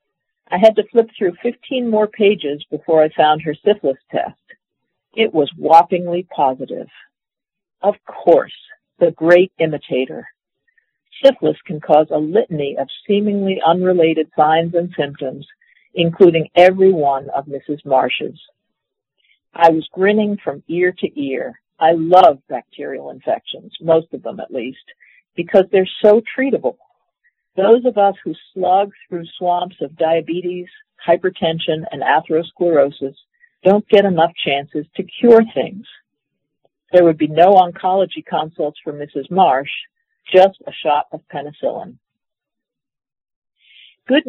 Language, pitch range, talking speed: English, 155-215 Hz, 125 wpm